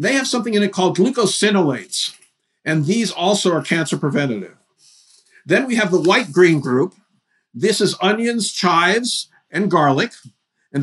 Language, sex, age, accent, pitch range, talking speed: English, male, 50-69, American, 170-210 Hz, 145 wpm